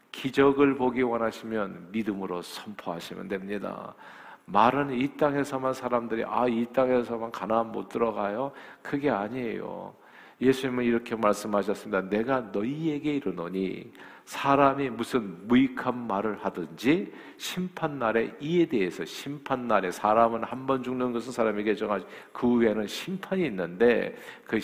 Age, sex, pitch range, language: 50-69, male, 105-135 Hz, Korean